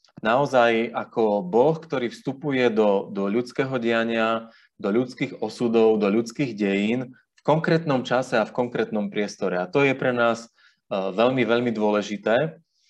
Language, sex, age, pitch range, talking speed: Slovak, male, 30-49, 110-135 Hz, 145 wpm